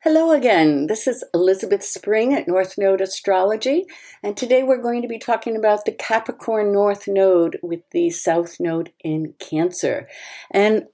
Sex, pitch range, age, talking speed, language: female, 175-275 Hz, 60-79, 160 wpm, English